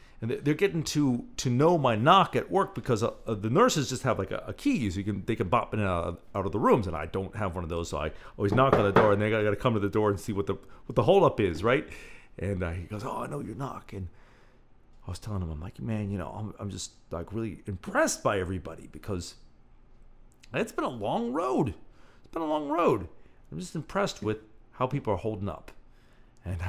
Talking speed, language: 250 wpm, English